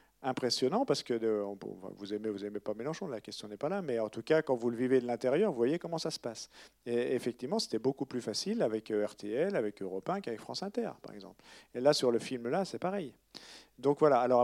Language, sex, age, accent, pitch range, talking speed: French, male, 50-69, French, 115-150 Hz, 235 wpm